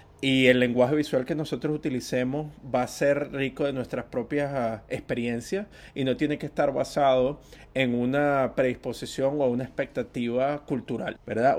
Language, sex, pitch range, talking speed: English, male, 120-140 Hz, 155 wpm